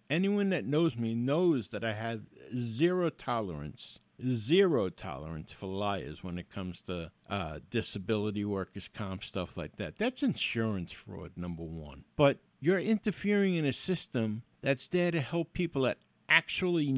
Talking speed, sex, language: 150 wpm, male, English